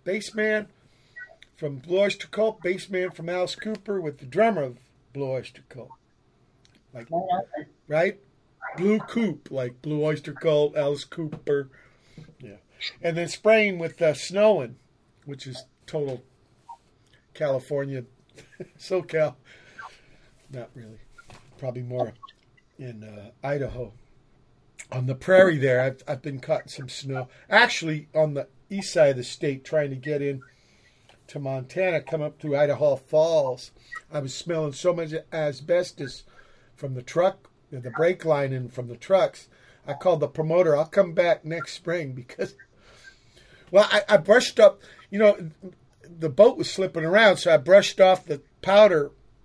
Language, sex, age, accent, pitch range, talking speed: English, male, 50-69, American, 130-185 Hz, 145 wpm